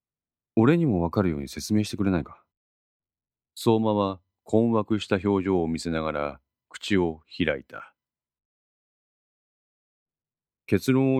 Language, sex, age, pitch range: Japanese, male, 40-59, 75-105 Hz